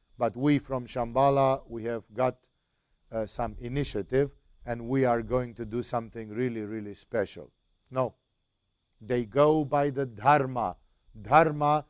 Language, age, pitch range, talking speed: English, 50-69, 115-140 Hz, 135 wpm